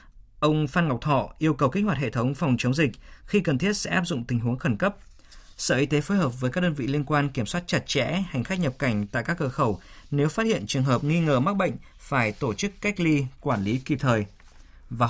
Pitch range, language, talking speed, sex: 120-155 Hz, Vietnamese, 260 wpm, male